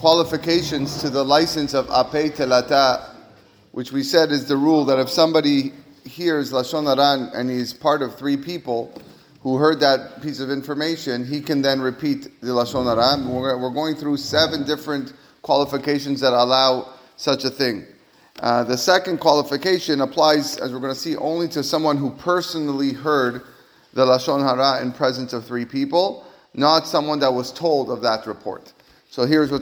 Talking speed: 170 wpm